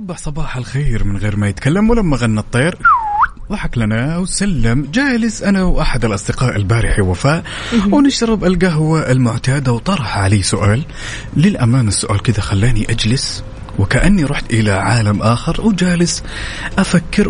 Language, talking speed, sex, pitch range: Arabic, 125 wpm, male, 105-160 Hz